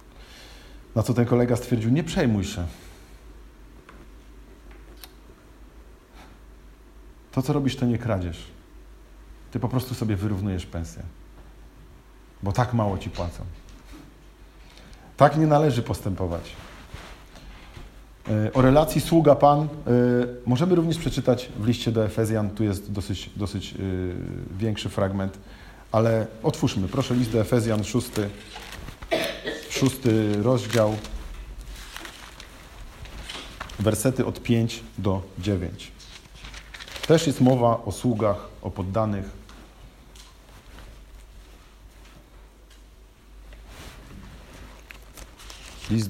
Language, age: Polish, 40-59